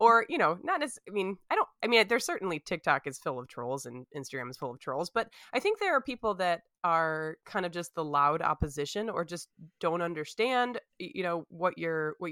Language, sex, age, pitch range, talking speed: English, female, 20-39, 155-200 Hz, 230 wpm